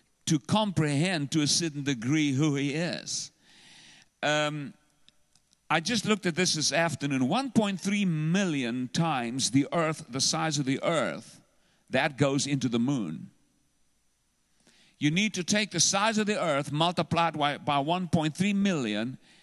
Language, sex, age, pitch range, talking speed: English, male, 50-69, 145-190 Hz, 140 wpm